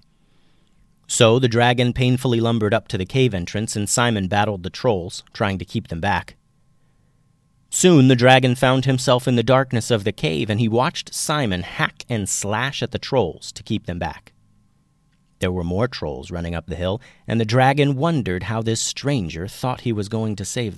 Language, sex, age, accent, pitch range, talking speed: English, male, 40-59, American, 105-140 Hz, 190 wpm